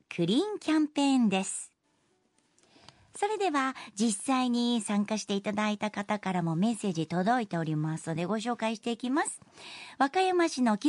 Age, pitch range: 50-69, 215-300 Hz